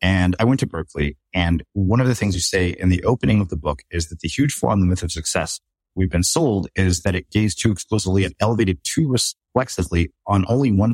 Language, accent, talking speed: English, American, 240 wpm